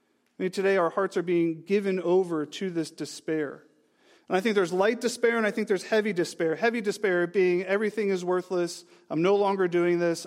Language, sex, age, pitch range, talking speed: English, male, 40-59, 160-195 Hz, 205 wpm